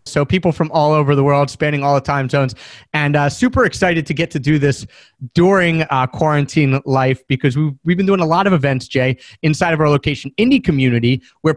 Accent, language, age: American, English, 30-49